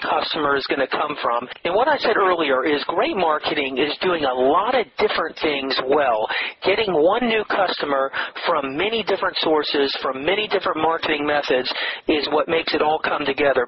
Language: English